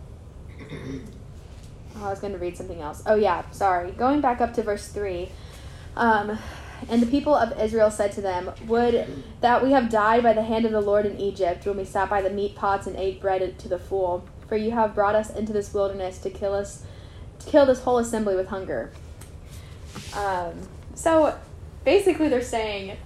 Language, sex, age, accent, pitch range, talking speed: English, female, 10-29, American, 200-265 Hz, 195 wpm